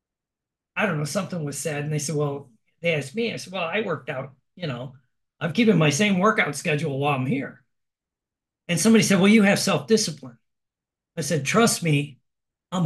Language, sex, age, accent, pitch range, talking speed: English, male, 50-69, American, 160-215 Hz, 195 wpm